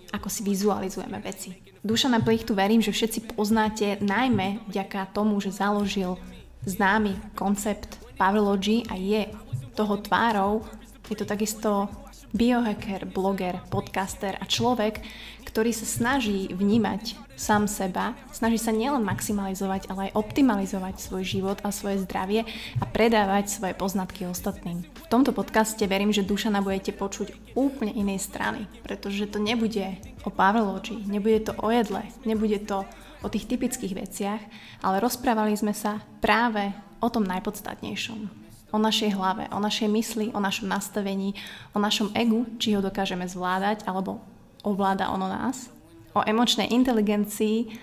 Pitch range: 195-220 Hz